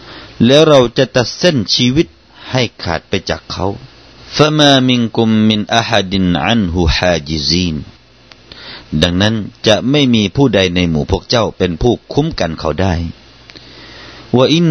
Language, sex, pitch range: Thai, male, 95-135 Hz